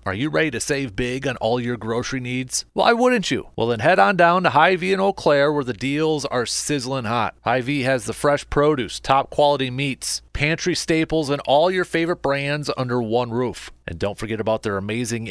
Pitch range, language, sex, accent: 120-165 Hz, English, male, American